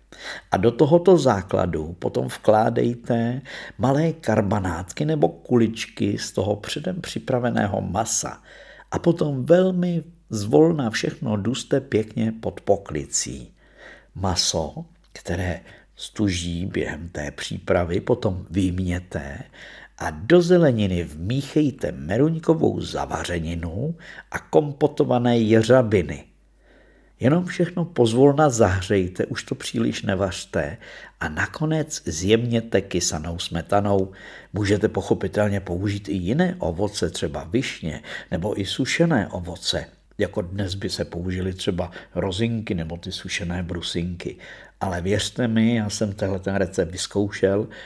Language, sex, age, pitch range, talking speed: Czech, male, 50-69, 95-125 Hz, 105 wpm